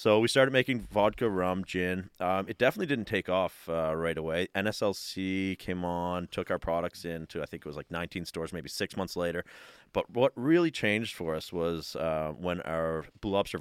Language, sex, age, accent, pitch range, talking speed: English, male, 30-49, American, 80-100 Hz, 205 wpm